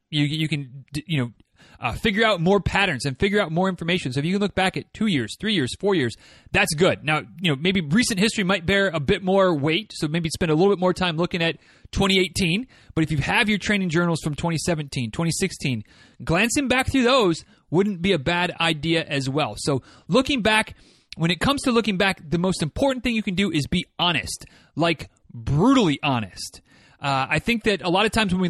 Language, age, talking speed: English, 30-49, 225 wpm